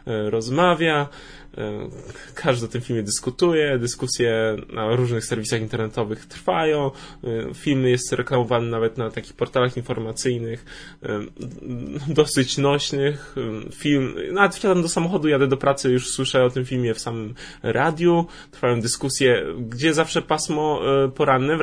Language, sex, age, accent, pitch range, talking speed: Polish, male, 10-29, native, 120-150 Hz, 125 wpm